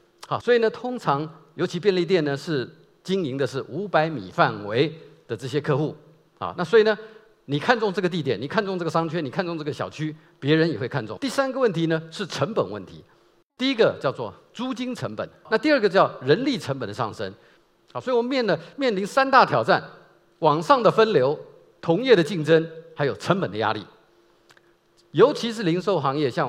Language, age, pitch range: Chinese, 50-69, 145-220 Hz